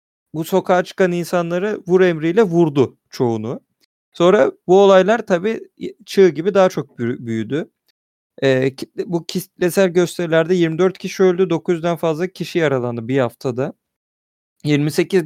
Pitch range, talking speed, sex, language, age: 140-185 Hz, 120 wpm, male, Turkish, 40-59